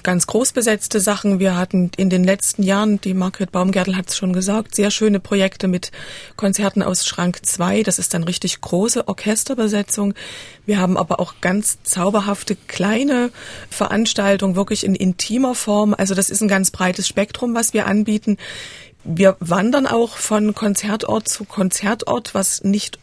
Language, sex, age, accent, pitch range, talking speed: German, female, 30-49, German, 185-215 Hz, 160 wpm